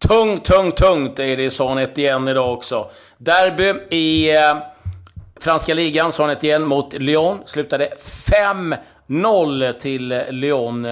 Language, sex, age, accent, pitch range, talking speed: Swedish, male, 30-49, native, 125-150 Hz, 125 wpm